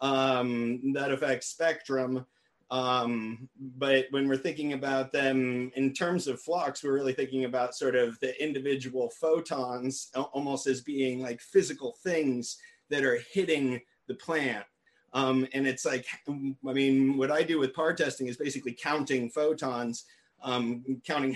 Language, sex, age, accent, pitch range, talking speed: English, male, 30-49, American, 125-140 Hz, 150 wpm